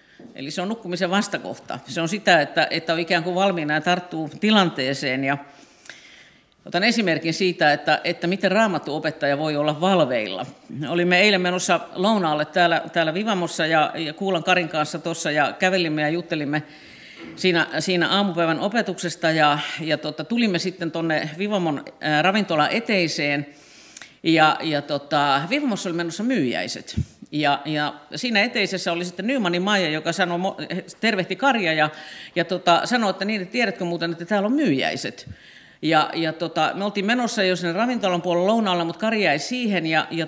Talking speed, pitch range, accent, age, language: 160 wpm, 160-205 Hz, native, 50-69, Finnish